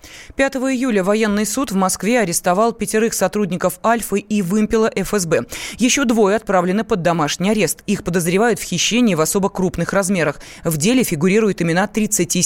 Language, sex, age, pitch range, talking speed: Russian, female, 20-39, 180-230 Hz, 155 wpm